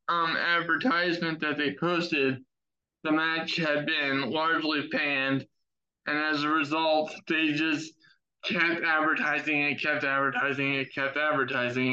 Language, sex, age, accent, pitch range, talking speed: English, male, 20-39, American, 145-175 Hz, 125 wpm